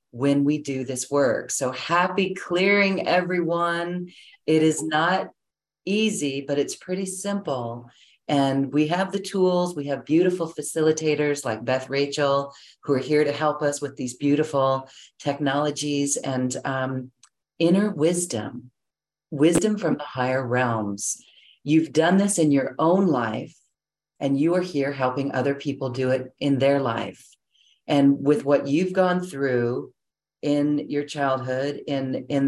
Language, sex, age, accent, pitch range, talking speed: English, female, 40-59, American, 130-155 Hz, 145 wpm